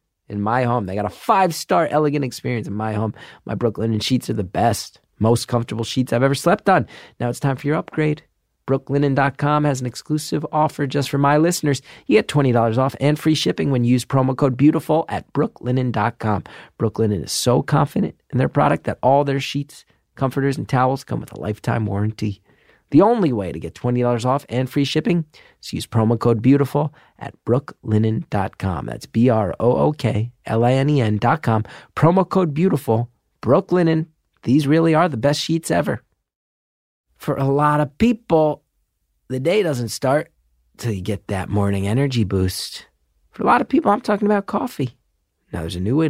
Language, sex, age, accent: English, male, 30-49, American